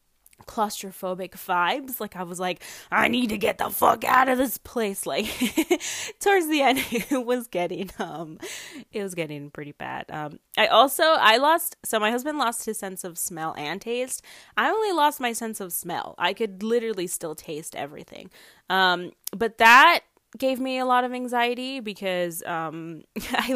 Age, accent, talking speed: 20-39, American, 175 wpm